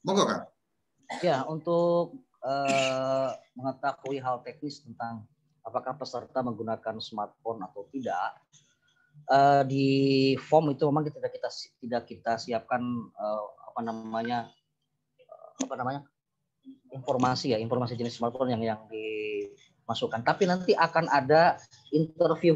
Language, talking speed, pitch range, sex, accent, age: Indonesian, 115 wpm, 125-170 Hz, female, native, 20-39